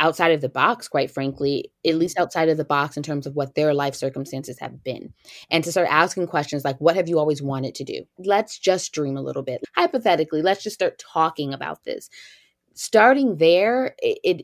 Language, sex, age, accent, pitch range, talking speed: English, female, 20-39, American, 140-180 Hz, 210 wpm